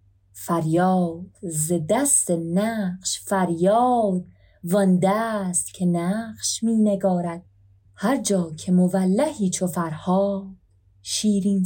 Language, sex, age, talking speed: Persian, female, 30-49, 85 wpm